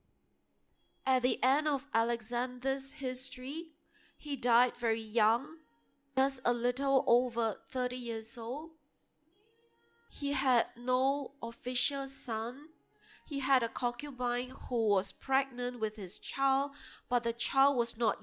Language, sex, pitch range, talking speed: English, female, 235-285 Hz, 120 wpm